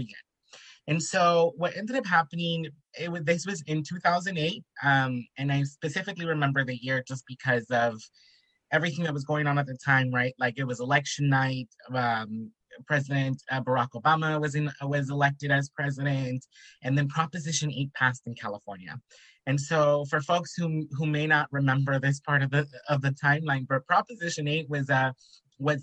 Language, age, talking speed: English, 20-39, 180 wpm